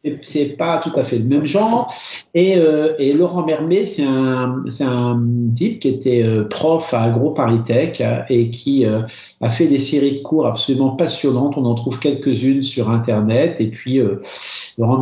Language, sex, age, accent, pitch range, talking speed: French, male, 50-69, French, 125-160 Hz, 185 wpm